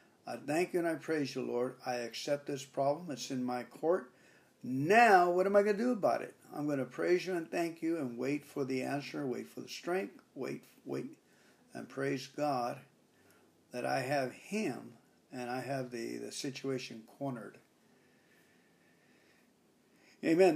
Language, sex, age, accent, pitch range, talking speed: English, male, 50-69, American, 135-180 Hz, 170 wpm